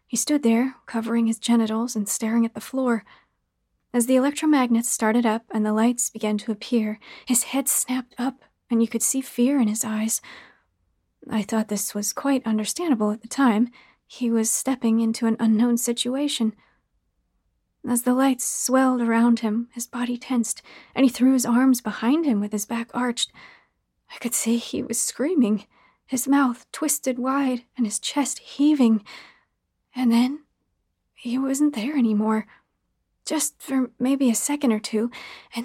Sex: female